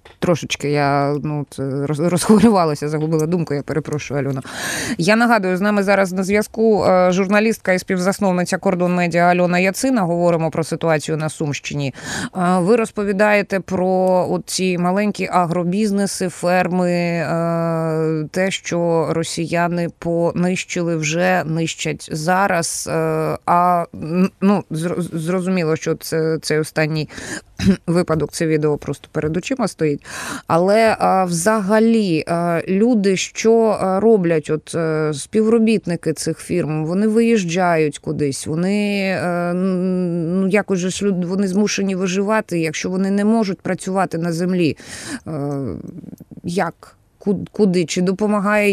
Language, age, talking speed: Ukrainian, 20-39, 105 wpm